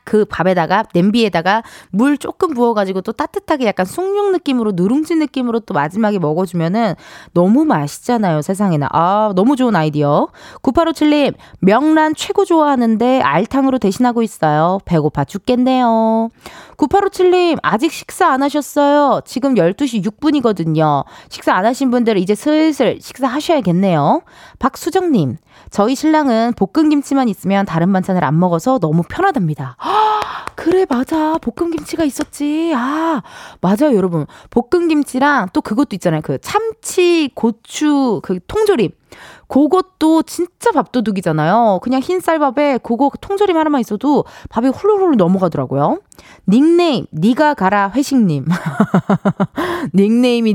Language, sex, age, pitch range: Korean, female, 20-39, 195-305 Hz